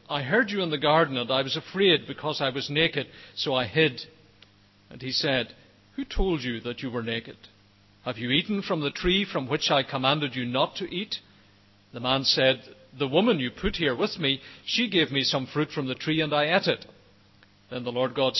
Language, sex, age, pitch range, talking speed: English, male, 50-69, 120-160 Hz, 220 wpm